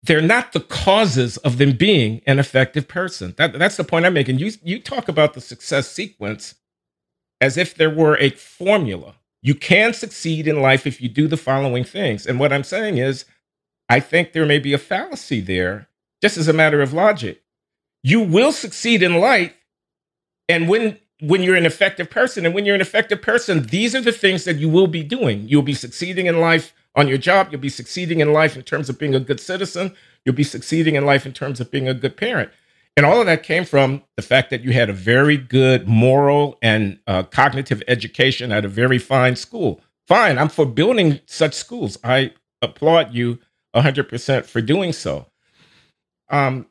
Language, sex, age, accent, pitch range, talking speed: English, male, 50-69, American, 130-170 Hz, 200 wpm